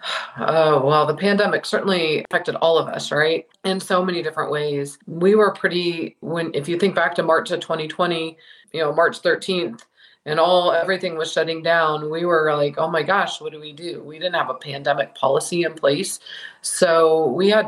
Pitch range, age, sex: 155-180 Hz, 40-59, female